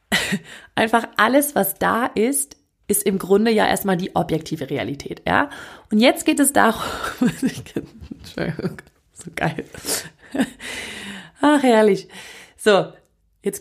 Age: 30-49